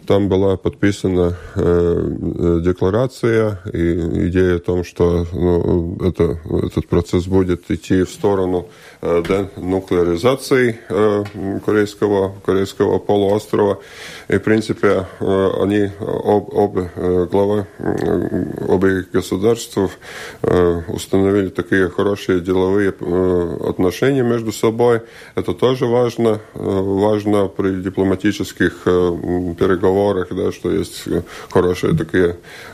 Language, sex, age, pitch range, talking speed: Russian, male, 20-39, 90-110 Hz, 110 wpm